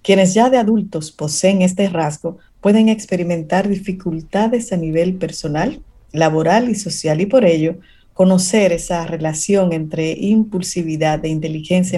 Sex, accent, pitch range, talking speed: female, American, 170-215 Hz, 130 wpm